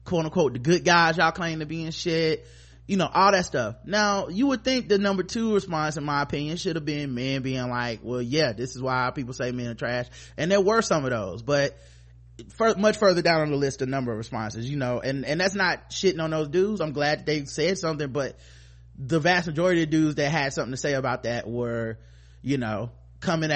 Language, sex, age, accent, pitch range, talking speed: English, male, 20-39, American, 115-170 Hz, 235 wpm